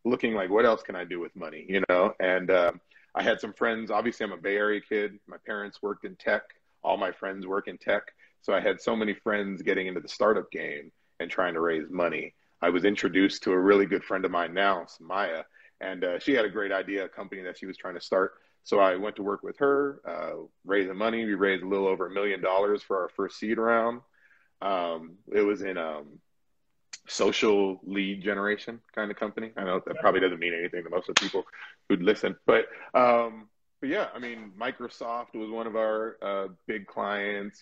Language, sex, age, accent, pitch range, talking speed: English, male, 30-49, American, 95-115 Hz, 220 wpm